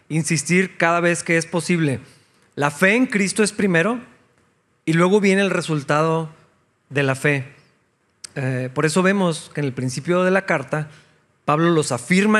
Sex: male